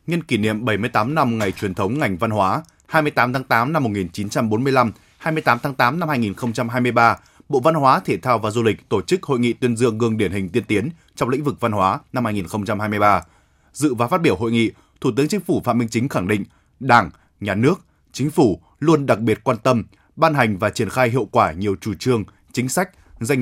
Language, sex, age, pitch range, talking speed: Vietnamese, male, 20-39, 105-140 Hz, 220 wpm